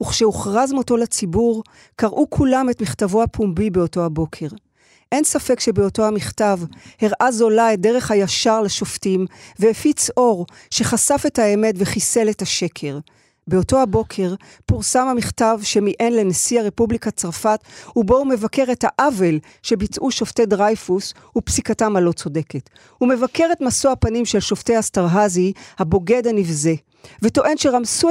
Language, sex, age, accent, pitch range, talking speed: Hebrew, female, 40-59, native, 185-245 Hz, 125 wpm